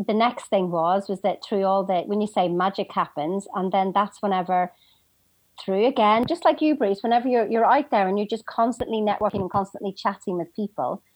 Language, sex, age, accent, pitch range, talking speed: English, female, 40-59, British, 195-275 Hz, 210 wpm